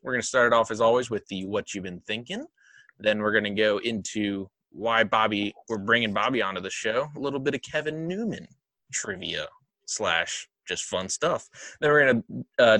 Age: 20-39